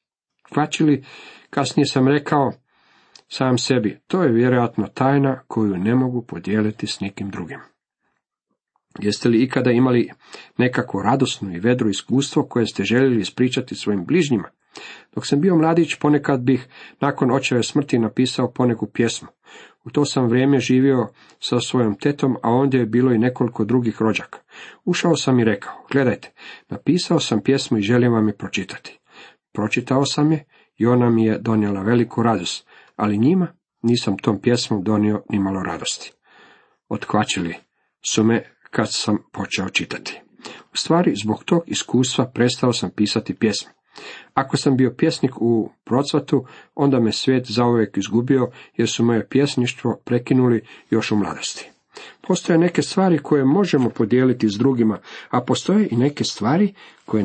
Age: 50-69